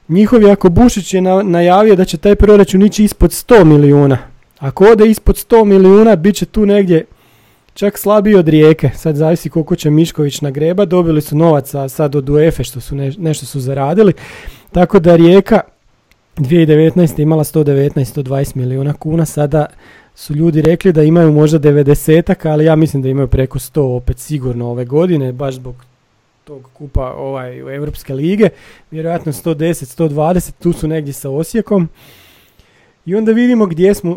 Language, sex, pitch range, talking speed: Croatian, male, 140-175 Hz, 165 wpm